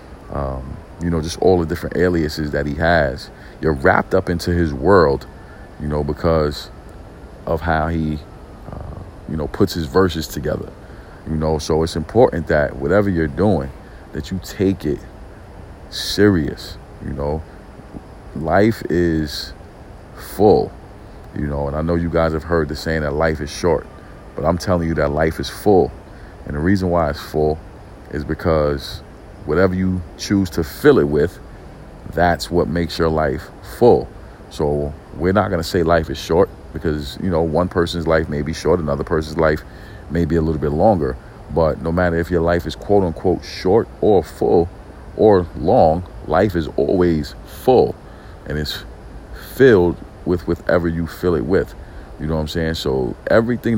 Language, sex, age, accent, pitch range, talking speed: English, male, 40-59, American, 75-90 Hz, 170 wpm